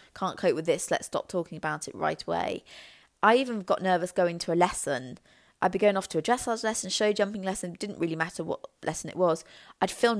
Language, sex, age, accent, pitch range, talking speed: English, female, 20-39, British, 165-200 Hz, 230 wpm